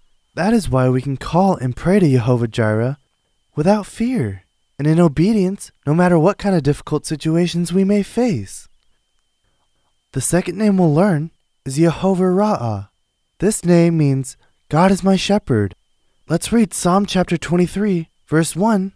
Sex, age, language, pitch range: male, 20-39, Korean, 140-200 Hz